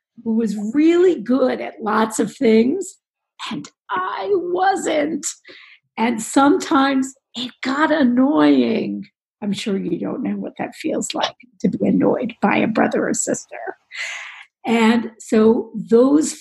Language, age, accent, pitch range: English, 50-69, American, 200-255 Hz